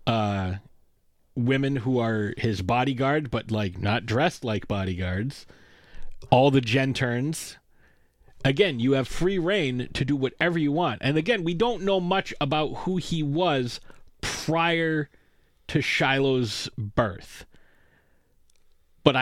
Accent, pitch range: American, 115-145 Hz